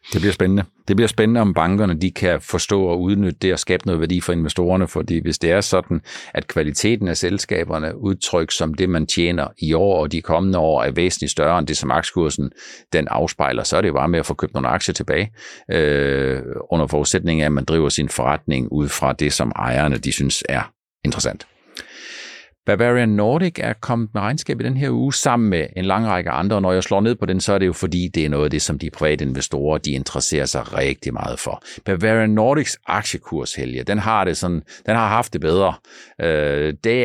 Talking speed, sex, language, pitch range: 215 wpm, male, Danish, 80-105 Hz